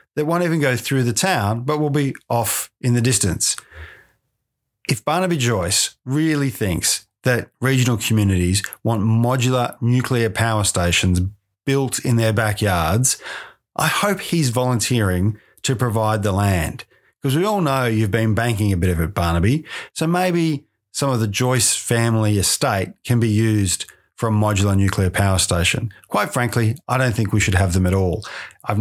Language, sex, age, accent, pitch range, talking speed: English, male, 40-59, Australian, 105-130 Hz, 165 wpm